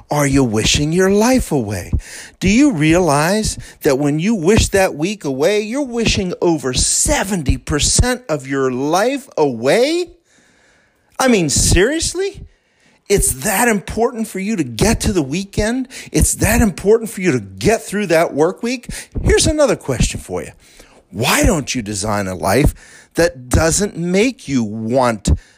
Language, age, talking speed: English, 40-59, 150 wpm